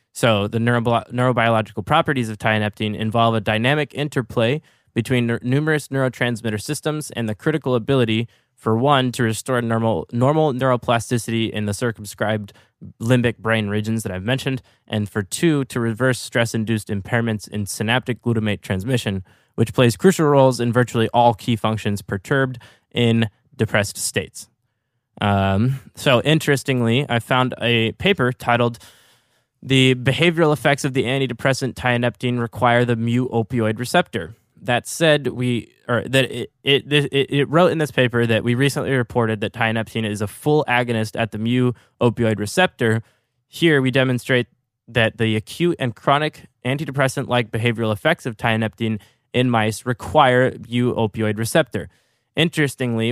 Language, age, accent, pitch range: English, 20-39, American, 110-130 Hz